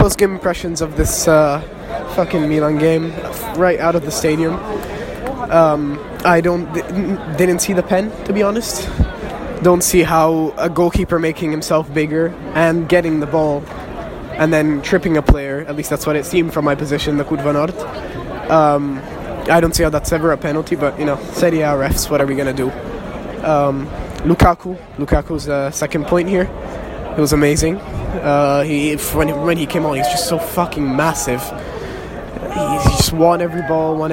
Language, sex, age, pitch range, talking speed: English, male, 20-39, 145-165 Hz, 180 wpm